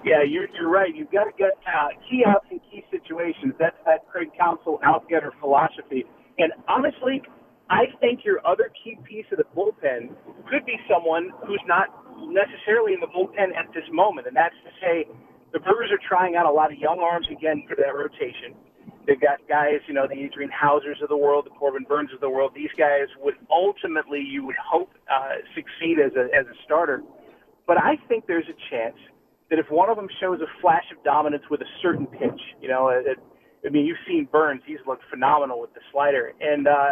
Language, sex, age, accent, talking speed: English, male, 40-59, American, 210 wpm